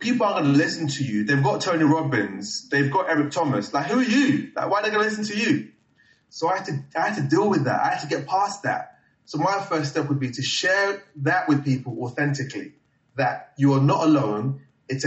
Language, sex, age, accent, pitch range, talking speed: English, male, 30-49, British, 130-160 Hz, 240 wpm